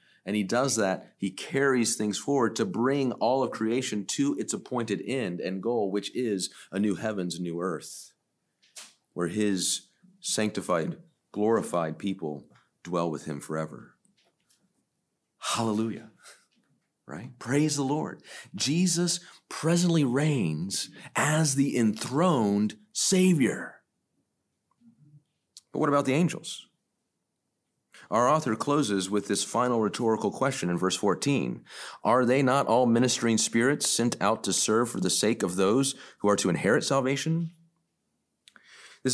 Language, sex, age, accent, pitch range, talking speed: English, male, 40-59, American, 100-150 Hz, 130 wpm